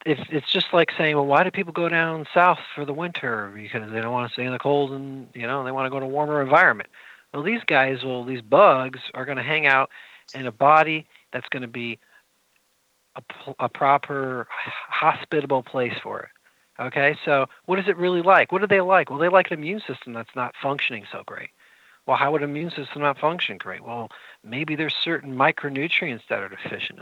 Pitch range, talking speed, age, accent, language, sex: 125-150 Hz, 220 wpm, 40-59, American, English, male